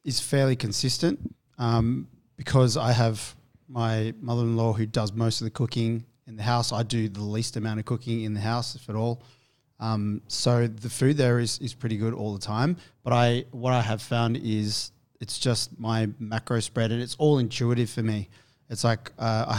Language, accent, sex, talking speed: English, Australian, male, 200 wpm